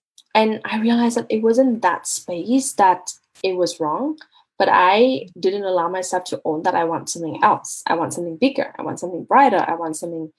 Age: 10-29